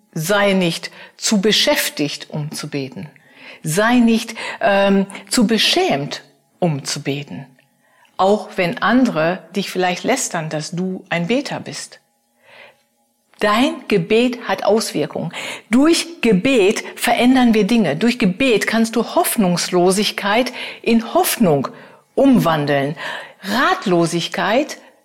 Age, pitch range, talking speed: 50-69, 195-245 Hz, 105 wpm